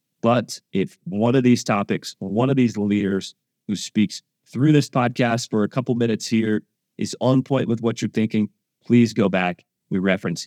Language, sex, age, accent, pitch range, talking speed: English, male, 30-49, American, 105-130 Hz, 185 wpm